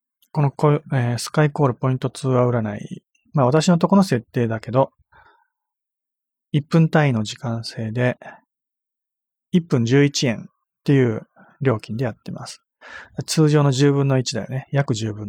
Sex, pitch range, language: male, 125-165 Hz, Japanese